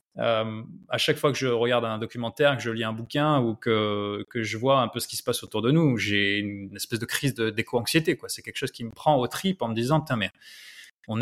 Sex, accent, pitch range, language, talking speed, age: male, French, 115-150 Hz, French, 260 wpm, 20-39